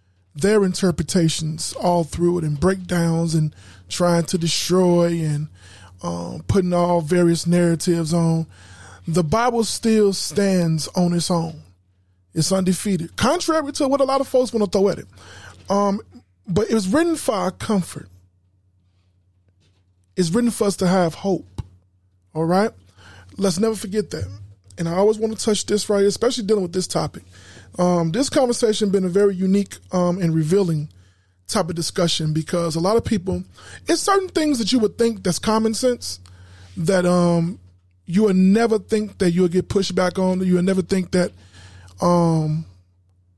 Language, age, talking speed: English, 20-39, 165 wpm